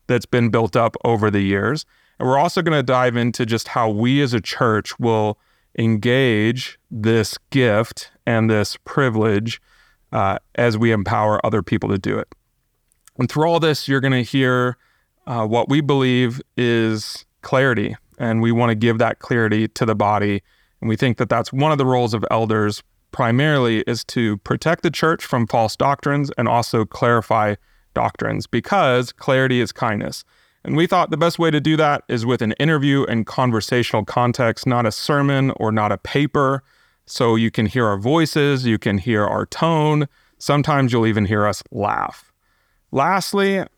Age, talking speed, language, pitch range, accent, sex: 30-49, 175 wpm, English, 110-140 Hz, American, male